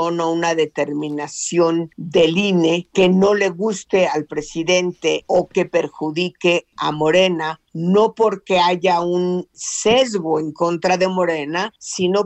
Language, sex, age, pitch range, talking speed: Spanish, female, 50-69, 160-190 Hz, 125 wpm